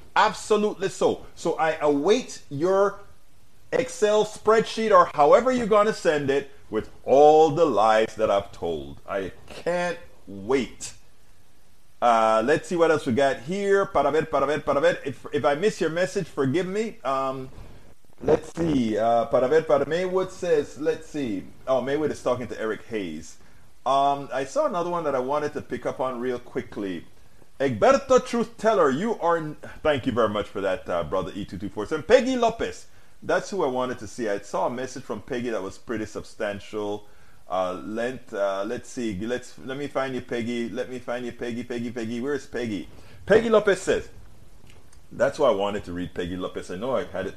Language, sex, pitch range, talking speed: English, male, 115-175 Hz, 190 wpm